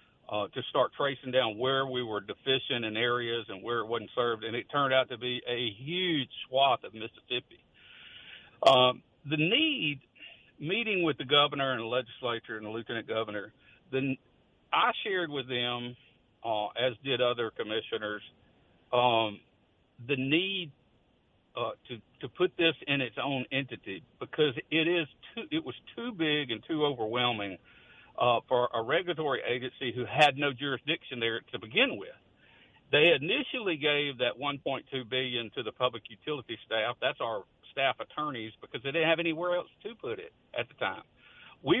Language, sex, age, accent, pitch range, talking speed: English, male, 60-79, American, 115-145 Hz, 165 wpm